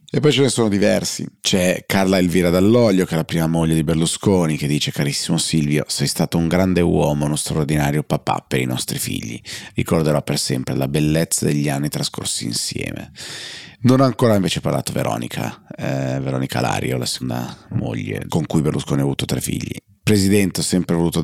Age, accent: 30-49, native